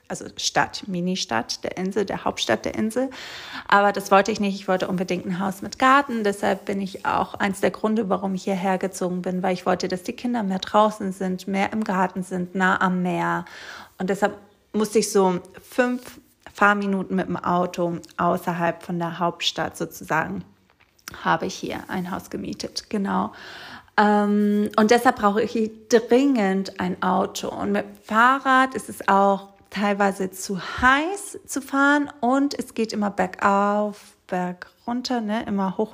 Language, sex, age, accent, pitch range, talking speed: German, female, 30-49, German, 185-220 Hz, 165 wpm